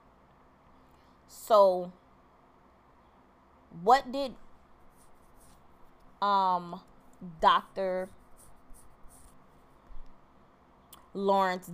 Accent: American